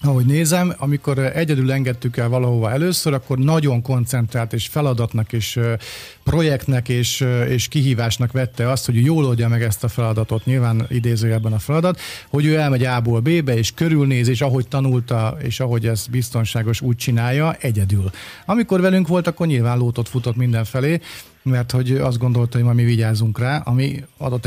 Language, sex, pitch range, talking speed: Hungarian, male, 120-150 Hz, 160 wpm